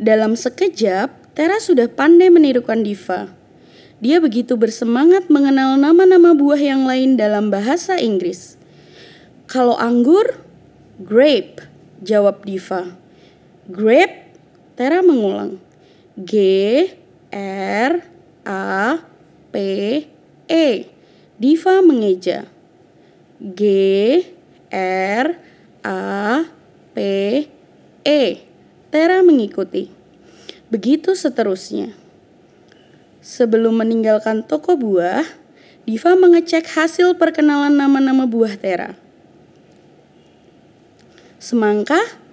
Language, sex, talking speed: Indonesian, female, 65 wpm